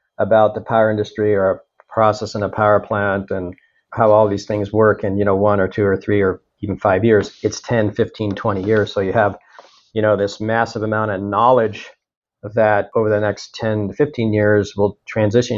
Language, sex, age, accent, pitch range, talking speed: English, male, 40-59, American, 105-115 Hz, 205 wpm